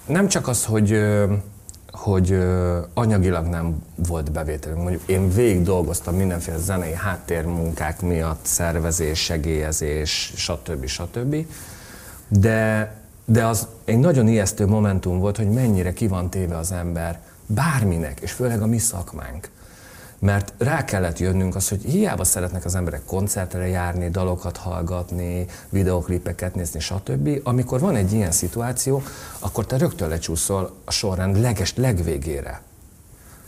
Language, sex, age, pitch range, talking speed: Hungarian, male, 40-59, 85-110 Hz, 125 wpm